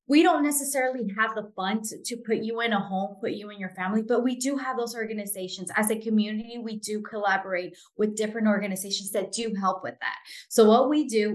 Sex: female